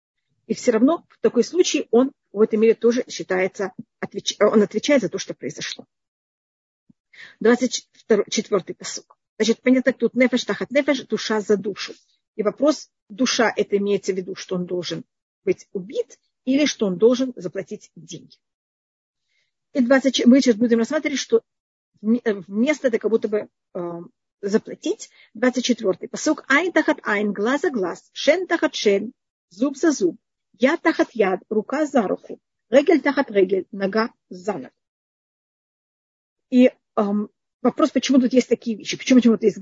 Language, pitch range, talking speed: Russian, 205-260 Hz, 155 wpm